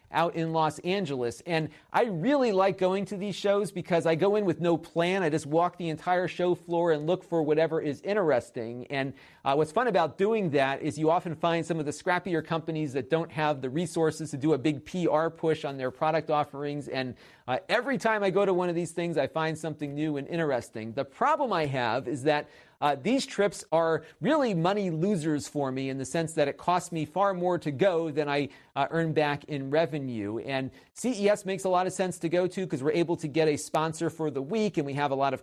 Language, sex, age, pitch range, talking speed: English, male, 40-59, 145-175 Hz, 235 wpm